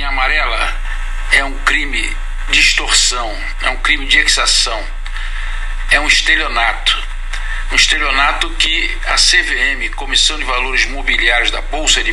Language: English